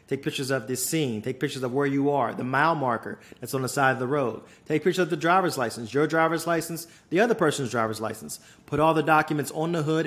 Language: English